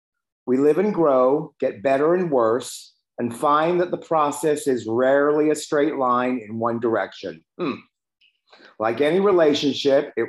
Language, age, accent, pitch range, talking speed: English, 50-69, American, 130-180 Hz, 150 wpm